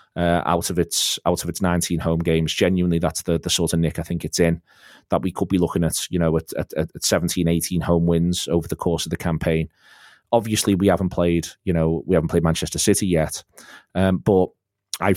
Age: 30-49